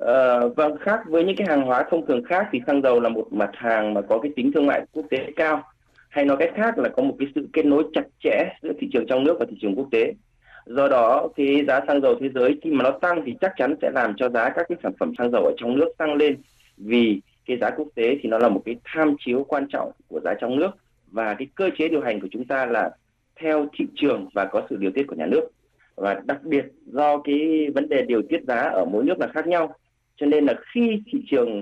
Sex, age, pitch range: male, 20-39, 125-180 Hz